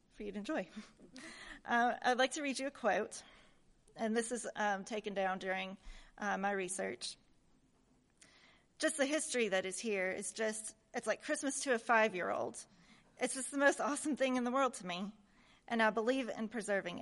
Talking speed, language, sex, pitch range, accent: 185 wpm, English, female, 195-240 Hz, American